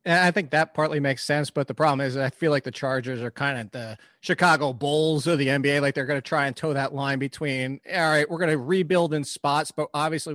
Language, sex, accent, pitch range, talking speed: English, male, American, 140-165 Hz, 260 wpm